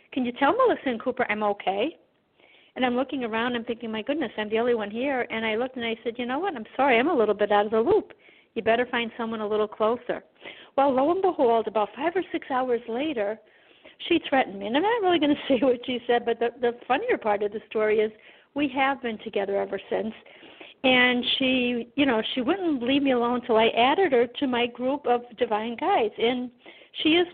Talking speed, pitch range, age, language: 235 wpm, 225-285 Hz, 50-69, English